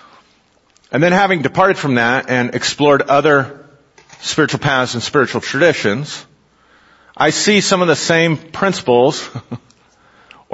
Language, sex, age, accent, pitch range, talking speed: English, male, 40-59, American, 120-165 Hz, 120 wpm